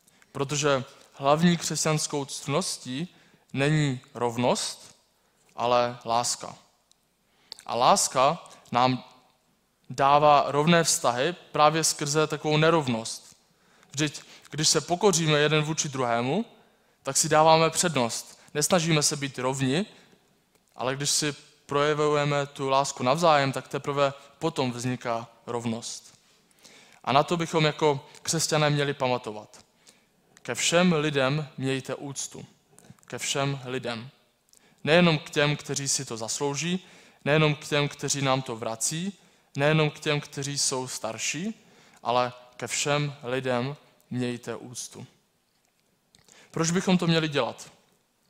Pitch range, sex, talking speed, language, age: 130-160 Hz, male, 115 wpm, Czech, 20-39